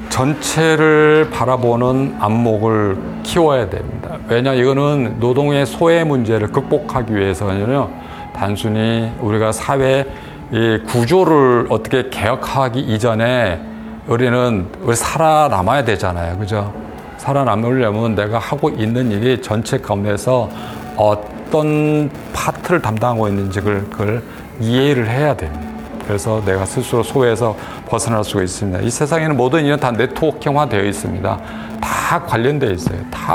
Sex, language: male, Korean